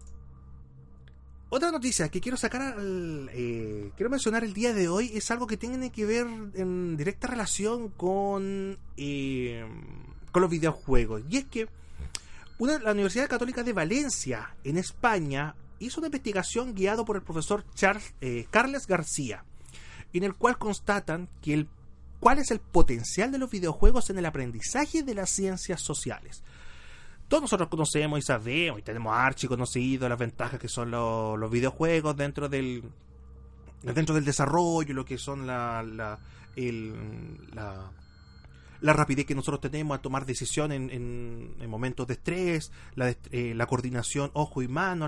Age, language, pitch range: 30-49, Spanish, 115-190 Hz